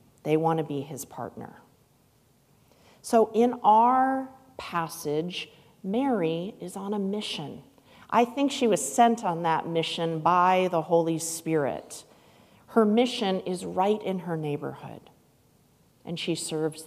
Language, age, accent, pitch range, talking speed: English, 40-59, American, 160-215 Hz, 130 wpm